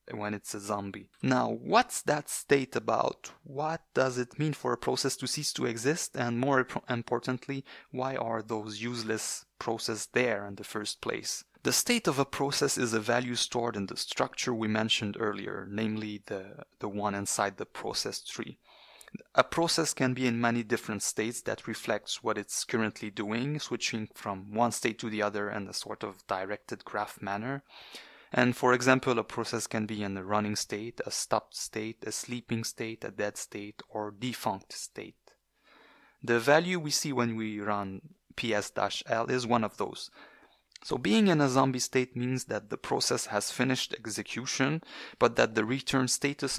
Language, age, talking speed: English, 30-49, 175 wpm